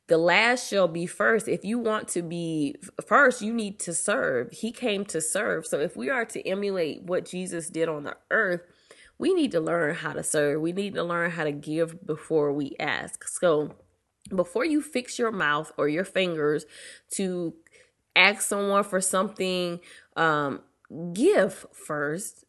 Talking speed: 175 wpm